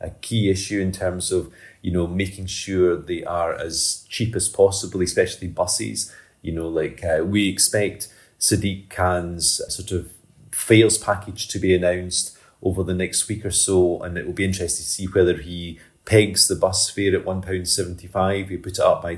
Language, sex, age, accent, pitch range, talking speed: English, male, 30-49, British, 90-100 Hz, 185 wpm